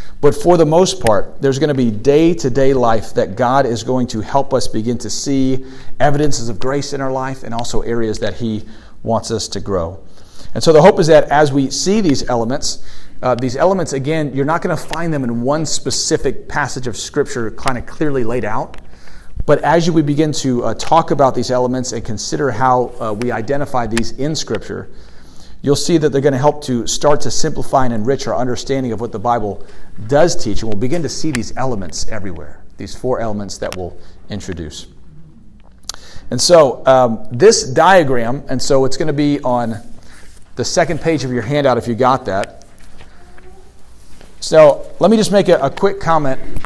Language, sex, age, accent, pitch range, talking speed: English, male, 40-59, American, 115-160 Hz, 195 wpm